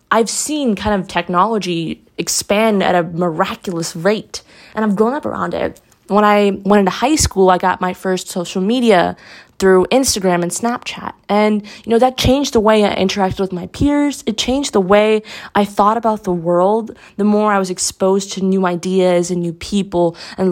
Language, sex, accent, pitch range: English, female, American, 185-230 Hz